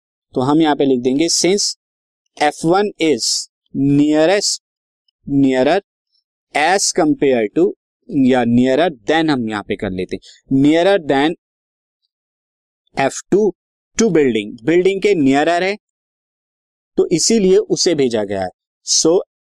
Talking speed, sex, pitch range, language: 125 wpm, male, 135-185 Hz, Hindi